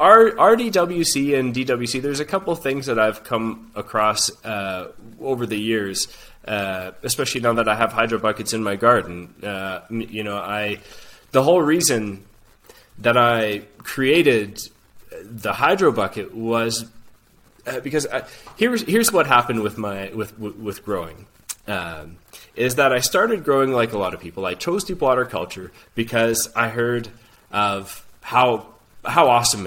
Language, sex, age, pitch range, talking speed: English, male, 20-39, 105-120 Hz, 155 wpm